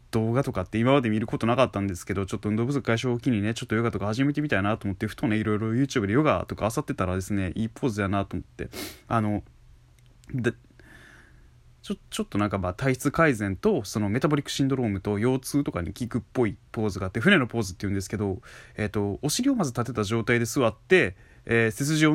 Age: 20-39